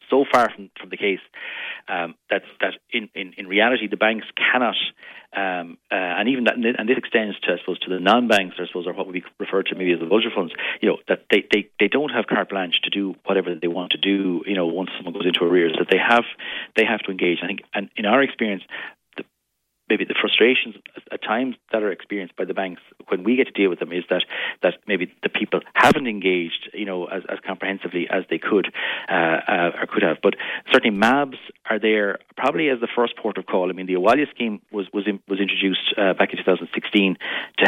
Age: 40-59